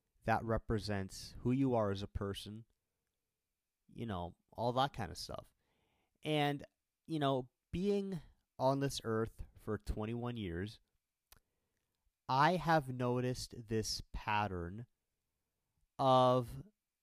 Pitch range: 100-135 Hz